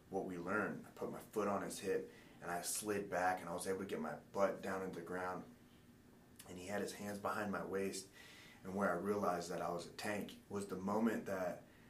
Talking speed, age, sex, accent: 240 wpm, 30-49, male, American